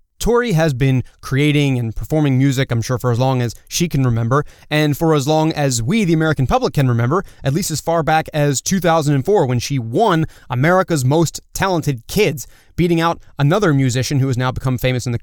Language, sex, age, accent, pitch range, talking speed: English, male, 20-39, American, 130-165 Hz, 205 wpm